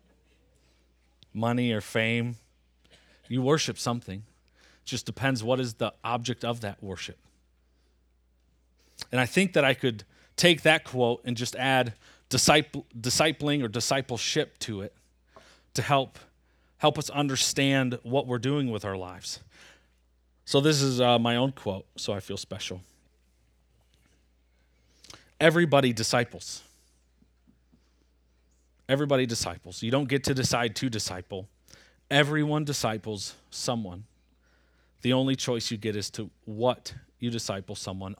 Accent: American